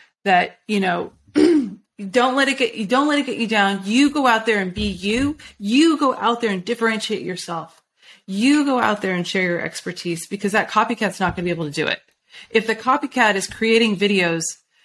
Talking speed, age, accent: 215 wpm, 30-49, American